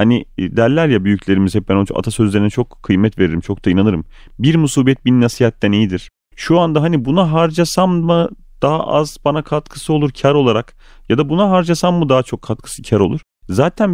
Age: 40-59